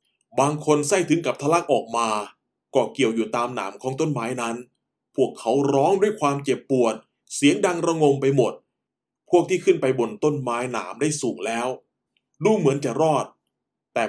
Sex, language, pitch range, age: male, Thai, 130-170 Hz, 20-39